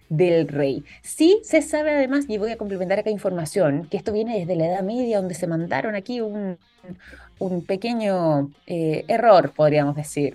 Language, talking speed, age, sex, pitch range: Spanish, 175 wpm, 20-39, female, 155-210 Hz